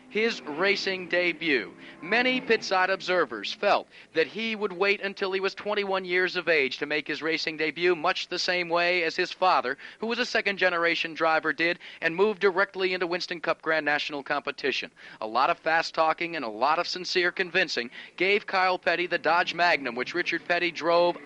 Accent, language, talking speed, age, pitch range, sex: American, English, 190 wpm, 50-69, 165-195 Hz, male